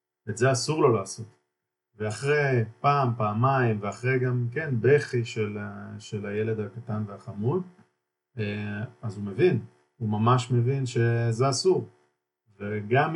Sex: male